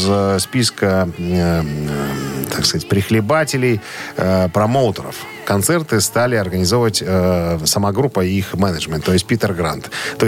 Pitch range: 95-125 Hz